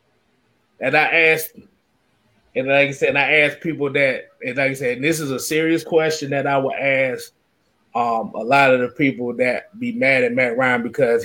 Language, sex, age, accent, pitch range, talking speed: English, male, 30-49, American, 135-195 Hz, 205 wpm